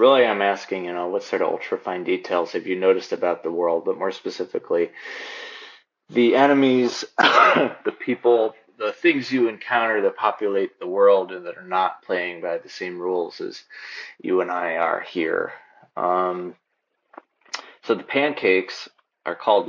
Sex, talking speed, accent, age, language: male, 160 wpm, American, 30-49, English